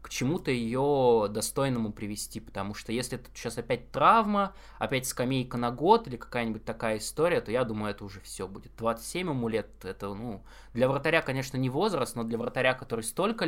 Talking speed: 185 wpm